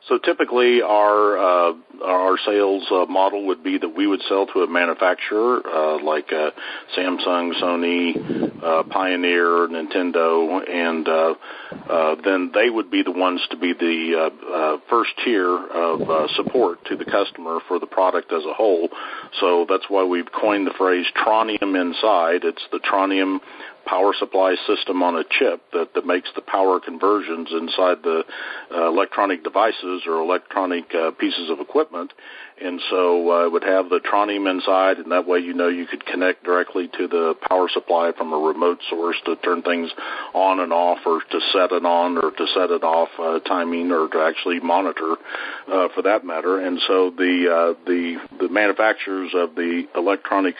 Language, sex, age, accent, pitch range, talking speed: English, male, 50-69, American, 85-95 Hz, 180 wpm